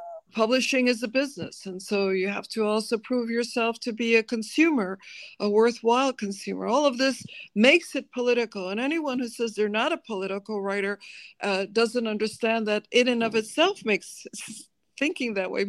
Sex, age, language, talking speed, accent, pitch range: female, 50-69, English, 175 wpm, American, 200-250 Hz